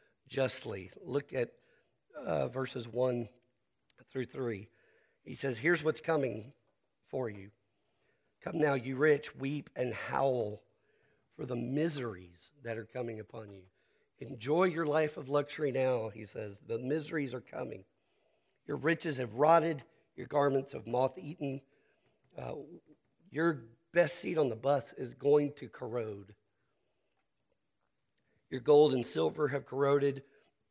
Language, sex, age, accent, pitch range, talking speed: English, male, 50-69, American, 115-145 Hz, 135 wpm